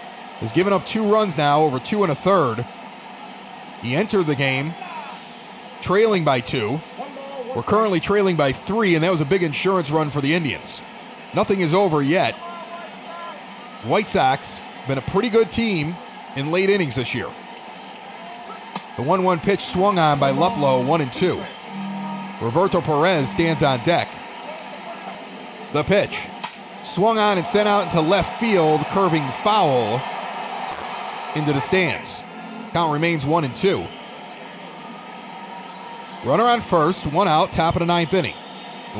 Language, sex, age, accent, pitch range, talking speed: English, male, 30-49, American, 160-205 Hz, 145 wpm